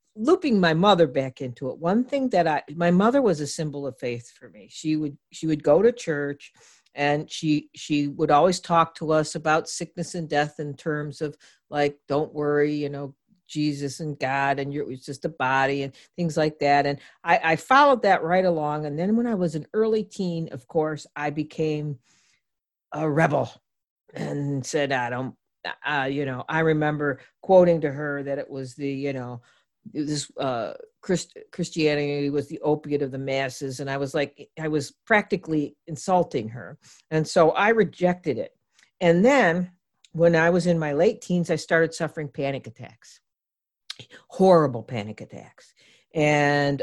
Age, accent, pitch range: 50-69, American, 140-170 Hz